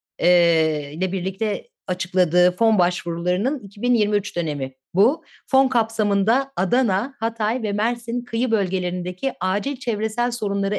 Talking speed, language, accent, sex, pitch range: 105 wpm, Turkish, native, female, 190-240 Hz